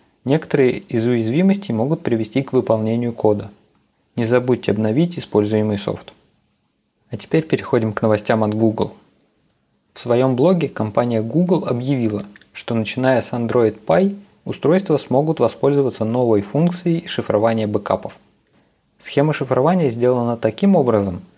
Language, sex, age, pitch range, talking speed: Russian, male, 20-39, 110-140 Hz, 120 wpm